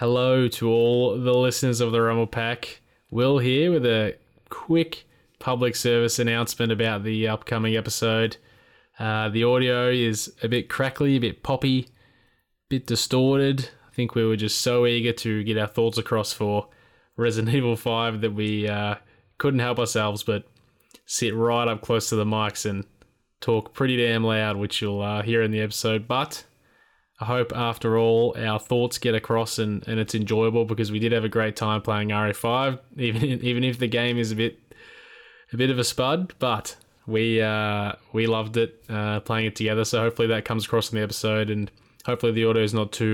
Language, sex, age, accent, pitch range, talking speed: English, male, 20-39, Australian, 110-120 Hz, 190 wpm